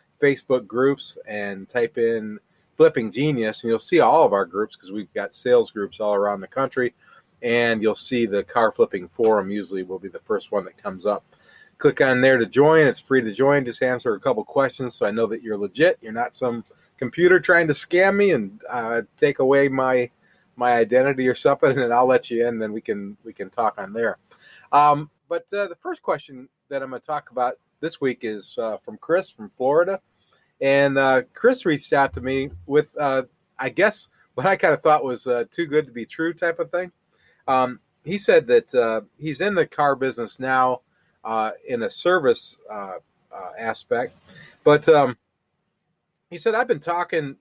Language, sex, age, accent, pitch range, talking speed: English, male, 30-49, American, 115-165 Hz, 205 wpm